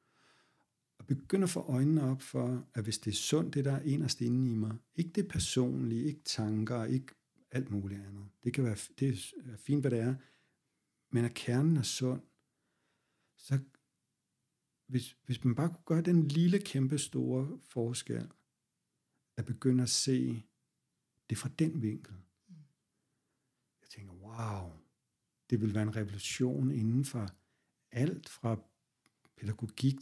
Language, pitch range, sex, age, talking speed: Danish, 115-135 Hz, male, 60-79, 150 wpm